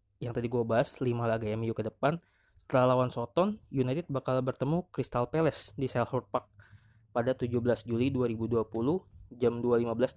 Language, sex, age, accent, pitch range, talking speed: Indonesian, male, 20-39, native, 110-130 Hz, 160 wpm